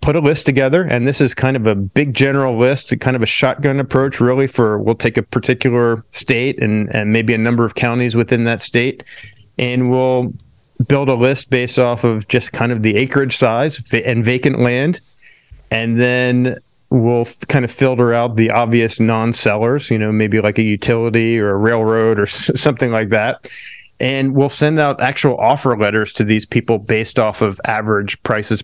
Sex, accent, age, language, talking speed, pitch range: male, American, 30-49, English, 190 wpm, 115-130 Hz